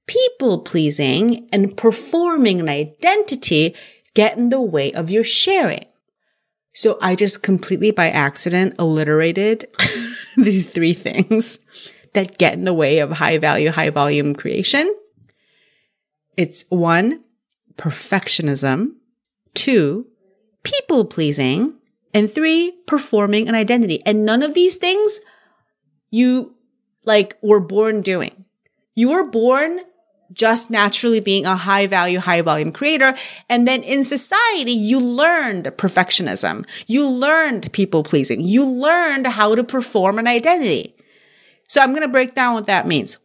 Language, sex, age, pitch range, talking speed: English, female, 30-49, 185-260 Hz, 130 wpm